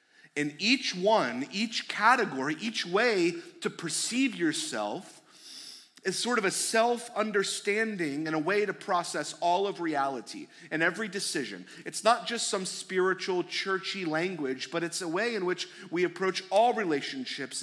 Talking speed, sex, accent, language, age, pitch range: 145 wpm, male, American, English, 30-49, 150-210 Hz